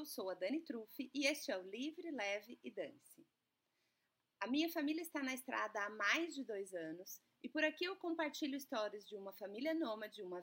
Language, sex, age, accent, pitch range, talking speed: Portuguese, female, 30-49, Brazilian, 195-280 Hz, 195 wpm